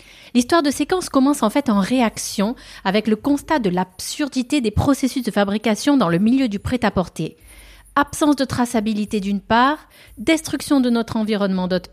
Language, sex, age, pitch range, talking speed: French, female, 30-49, 195-260 Hz, 160 wpm